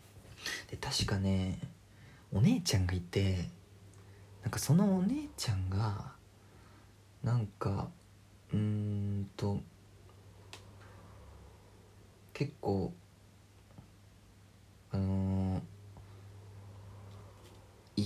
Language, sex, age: Japanese, male, 40-59